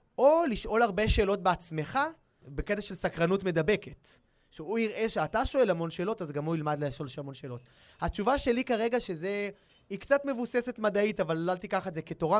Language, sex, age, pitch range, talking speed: Hebrew, male, 20-39, 165-215 Hz, 175 wpm